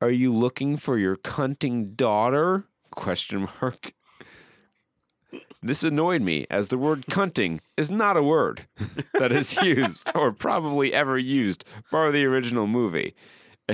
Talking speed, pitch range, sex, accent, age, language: 135 wpm, 95-135 Hz, male, American, 40-59, English